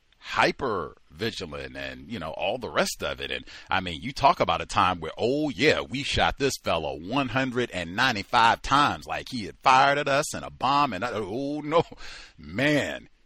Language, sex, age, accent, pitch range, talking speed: English, male, 40-59, American, 95-130 Hz, 185 wpm